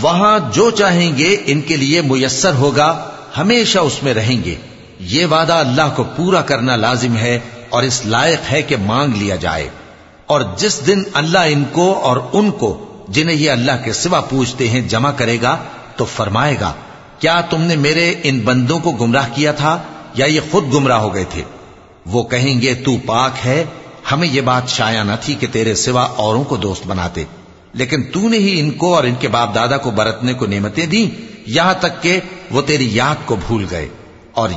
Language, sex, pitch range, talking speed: English, male, 115-165 Hz, 190 wpm